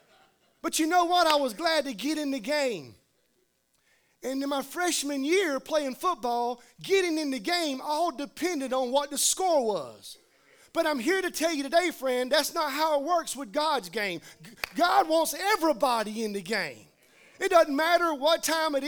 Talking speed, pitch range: 185 wpm, 225-305 Hz